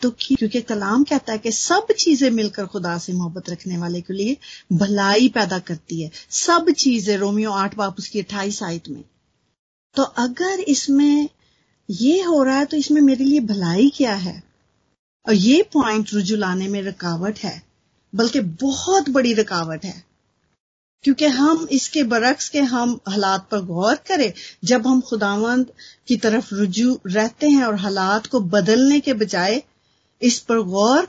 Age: 30-49